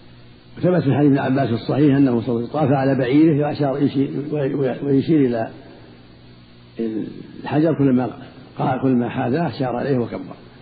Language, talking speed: Arabic, 115 wpm